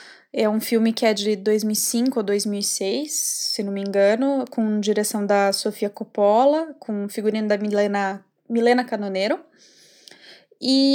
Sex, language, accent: female, Portuguese, Brazilian